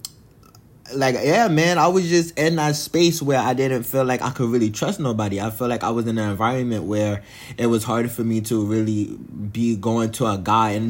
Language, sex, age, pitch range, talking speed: English, male, 20-39, 110-130 Hz, 225 wpm